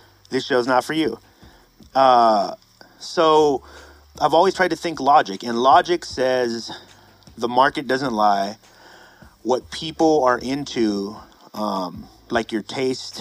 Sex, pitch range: male, 105-125 Hz